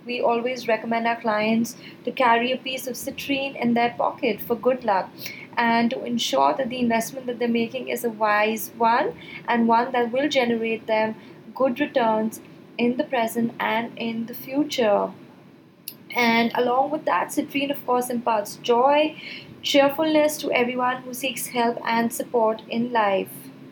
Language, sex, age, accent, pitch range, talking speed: English, female, 20-39, Indian, 230-270 Hz, 160 wpm